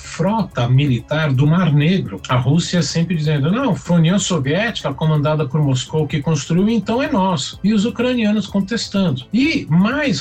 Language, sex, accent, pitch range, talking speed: Portuguese, male, Brazilian, 130-175 Hz, 165 wpm